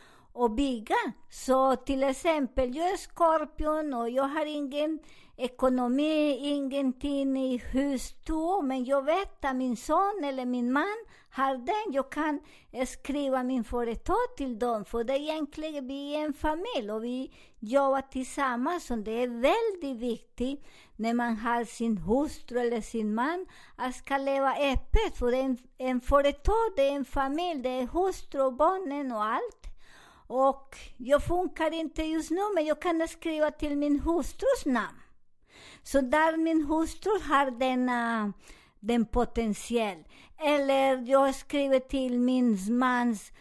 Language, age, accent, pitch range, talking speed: Swedish, 50-69, American, 245-300 Hz, 145 wpm